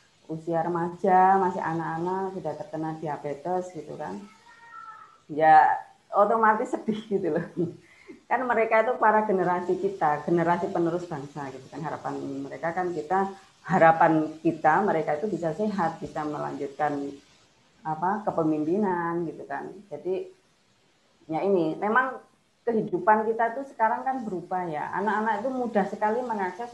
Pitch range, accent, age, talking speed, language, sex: 160-210 Hz, native, 30-49, 130 wpm, Indonesian, female